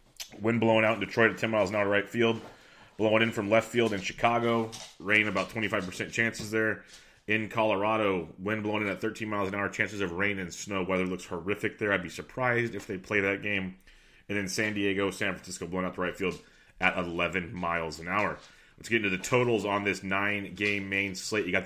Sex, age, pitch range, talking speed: male, 30-49, 95-110 Hz, 220 wpm